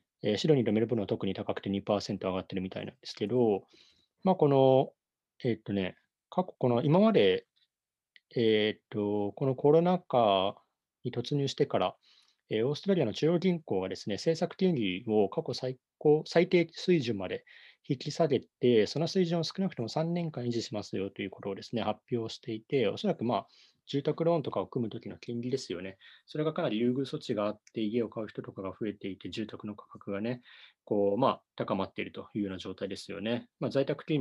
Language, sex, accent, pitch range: Japanese, male, native, 105-155 Hz